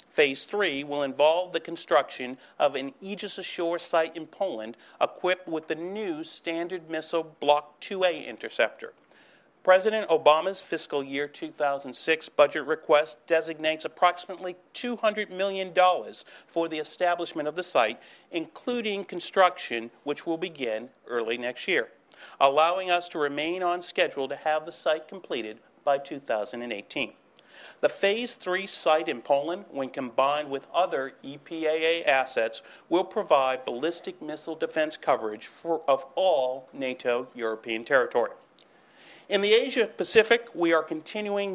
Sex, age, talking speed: male, 40-59, 130 wpm